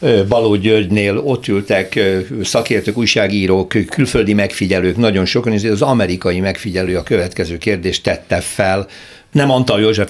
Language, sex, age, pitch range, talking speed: Hungarian, male, 60-79, 90-115 Hz, 125 wpm